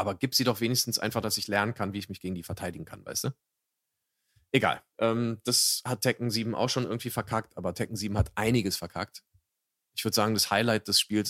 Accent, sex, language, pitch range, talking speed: German, male, German, 100-115 Hz, 220 wpm